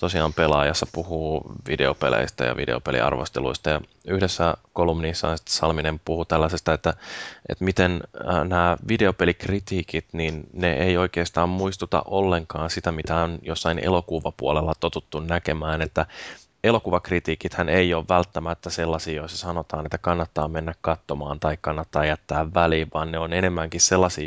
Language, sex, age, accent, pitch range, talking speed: Finnish, male, 20-39, native, 80-90 Hz, 130 wpm